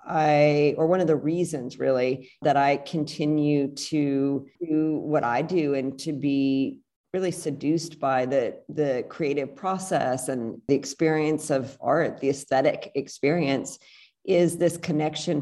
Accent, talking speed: American, 140 wpm